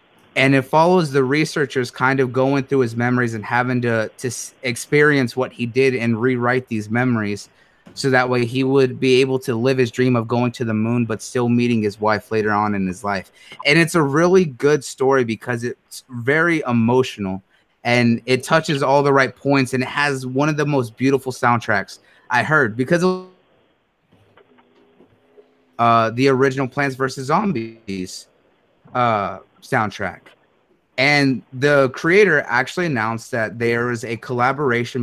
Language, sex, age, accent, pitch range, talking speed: English, male, 30-49, American, 115-135 Hz, 165 wpm